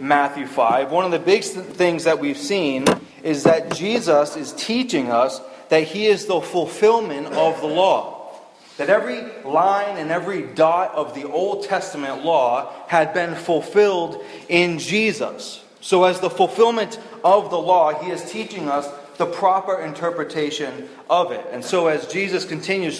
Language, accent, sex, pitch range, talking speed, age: English, American, male, 155-205 Hz, 160 wpm, 30-49